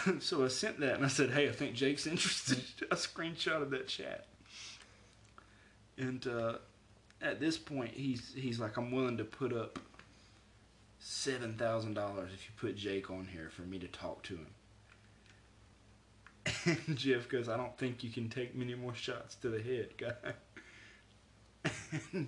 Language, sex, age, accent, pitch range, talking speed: English, male, 20-39, American, 105-130 Hz, 160 wpm